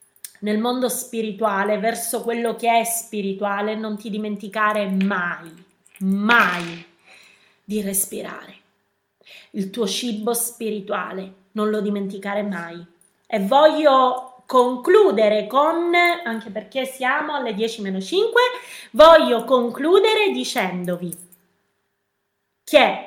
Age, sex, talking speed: 20-39, female, 95 wpm